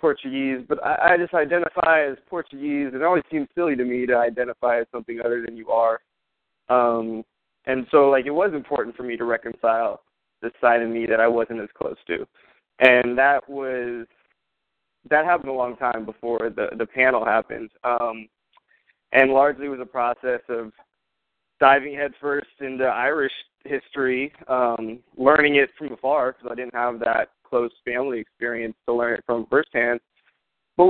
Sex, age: male, 20-39